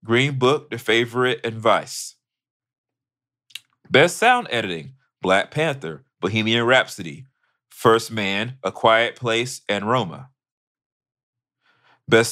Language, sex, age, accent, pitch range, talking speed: English, male, 30-49, American, 100-130 Hz, 95 wpm